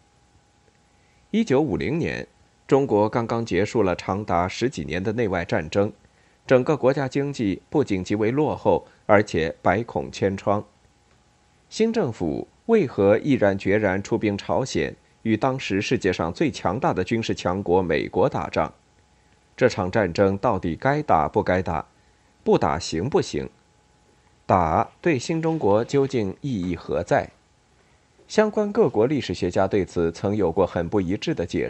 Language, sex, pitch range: Chinese, male, 95-130 Hz